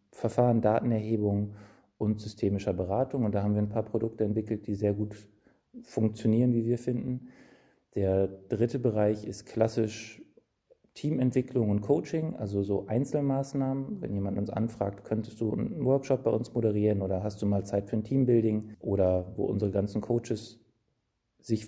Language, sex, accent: German, male, German